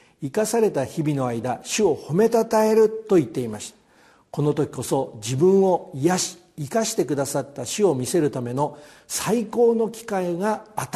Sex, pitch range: male, 130-200 Hz